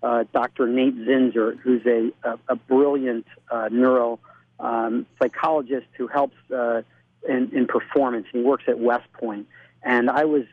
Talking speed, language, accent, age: 150 wpm, English, American, 40-59